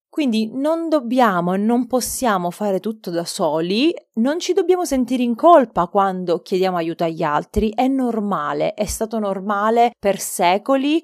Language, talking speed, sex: Italian, 150 wpm, female